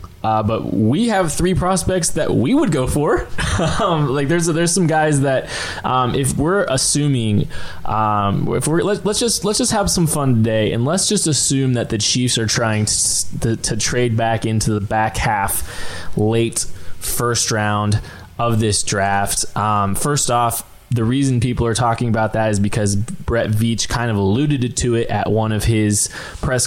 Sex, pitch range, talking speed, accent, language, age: male, 110-140 Hz, 185 wpm, American, English, 20-39